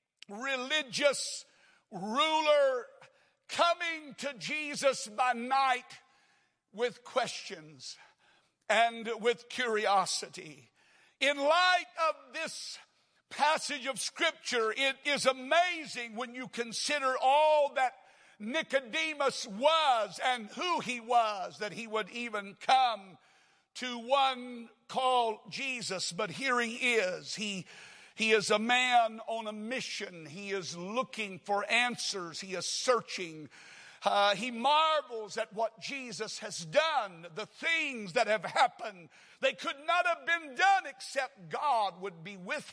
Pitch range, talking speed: 210-275 Hz, 120 wpm